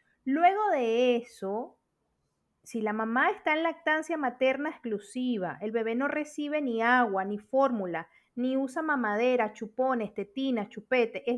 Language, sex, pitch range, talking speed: Spanish, female, 235-310 Hz, 135 wpm